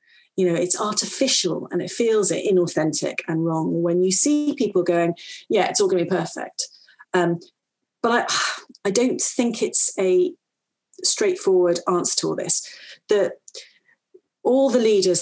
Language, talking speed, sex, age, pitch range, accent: English, 160 wpm, female, 40-59, 175-240 Hz, British